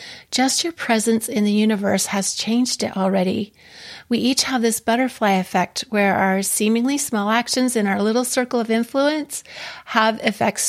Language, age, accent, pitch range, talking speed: English, 40-59, American, 200-235 Hz, 165 wpm